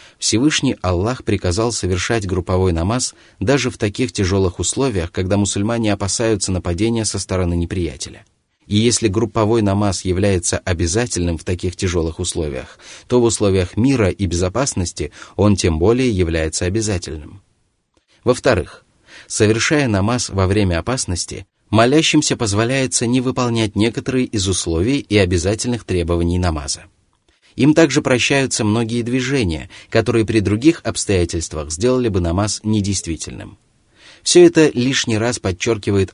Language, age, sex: Russian, 30-49, male